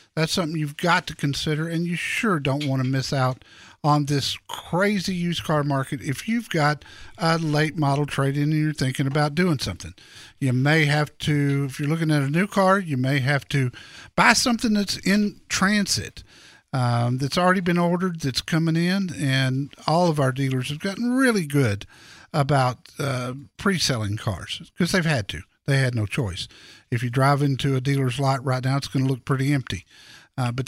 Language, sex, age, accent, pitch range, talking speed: English, male, 50-69, American, 135-175 Hz, 195 wpm